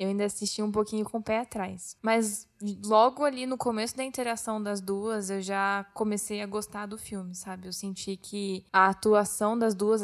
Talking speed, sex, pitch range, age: 195 wpm, female, 200-230 Hz, 10-29